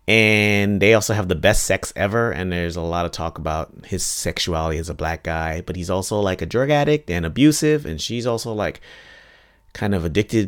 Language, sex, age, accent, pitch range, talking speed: English, male, 30-49, American, 85-115 Hz, 210 wpm